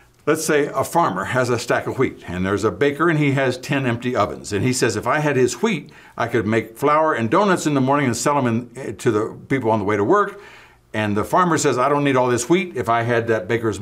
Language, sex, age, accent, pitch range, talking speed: English, male, 60-79, American, 110-145 Hz, 270 wpm